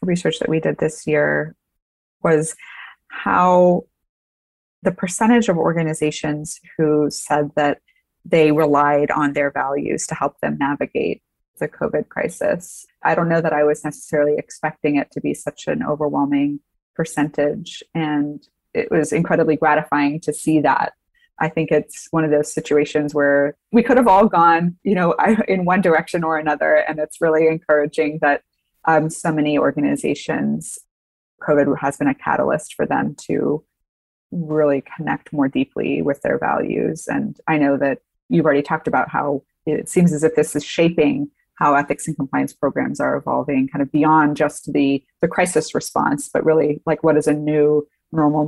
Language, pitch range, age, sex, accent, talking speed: English, 145-165 Hz, 20-39, female, American, 165 wpm